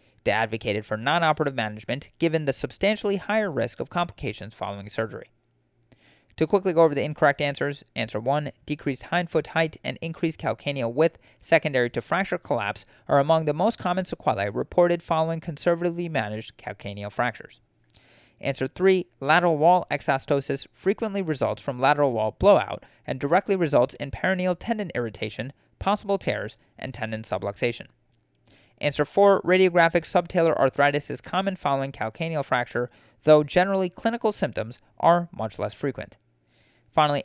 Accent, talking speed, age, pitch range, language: American, 145 wpm, 30-49, 120-175 Hz, English